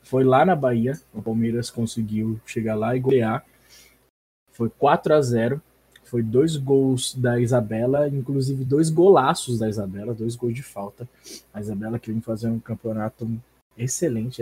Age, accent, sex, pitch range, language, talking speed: 20-39, Brazilian, male, 125-200 Hz, Portuguese, 155 wpm